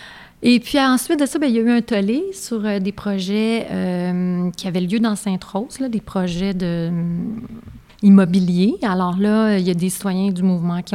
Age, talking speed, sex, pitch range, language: 30-49, 190 wpm, female, 180-215 Hz, French